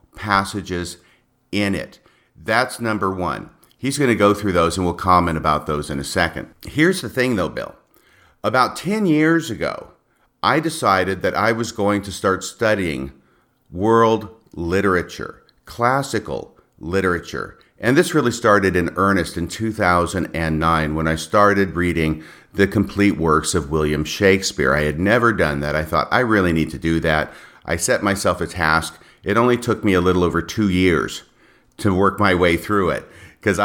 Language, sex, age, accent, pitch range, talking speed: English, male, 50-69, American, 85-110 Hz, 170 wpm